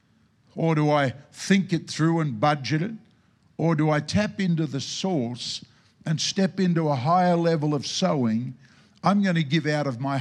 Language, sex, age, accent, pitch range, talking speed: English, male, 50-69, Australian, 140-180 Hz, 180 wpm